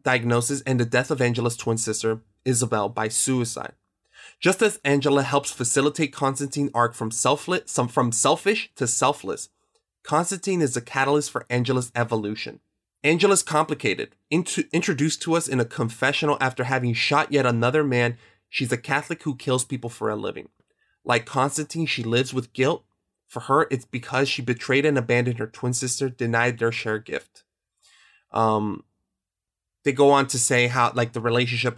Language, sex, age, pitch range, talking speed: English, male, 20-39, 115-140 Hz, 165 wpm